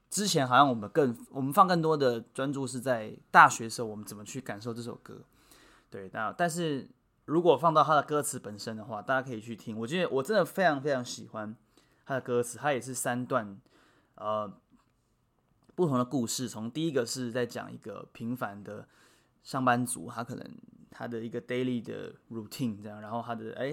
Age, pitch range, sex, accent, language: 20-39, 115-135 Hz, male, native, Chinese